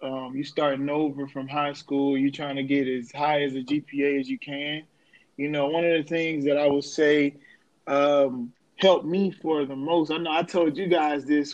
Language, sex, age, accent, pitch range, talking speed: English, male, 20-39, American, 145-175 Hz, 225 wpm